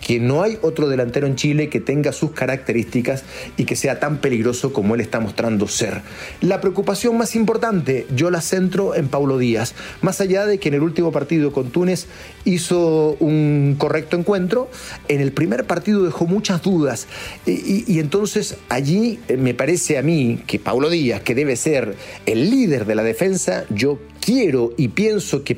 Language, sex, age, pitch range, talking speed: Spanish, male, 40-59, 120-165 Hz, 180 wpm